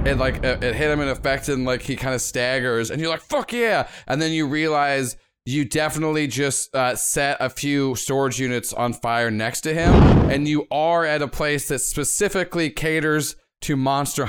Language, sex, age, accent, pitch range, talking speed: English, male, 30-49, American, 120-150 Hz, 195 wpm